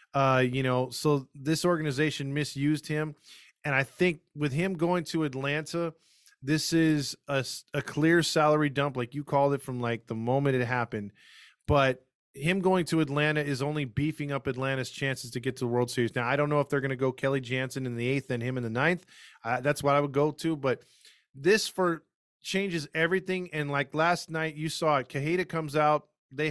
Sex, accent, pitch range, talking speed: male, American, 135-165 Hz, 210 wpm